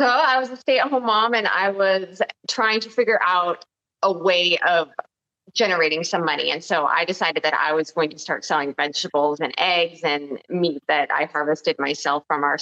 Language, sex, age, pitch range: English, female, 20-39, 145-190 Hz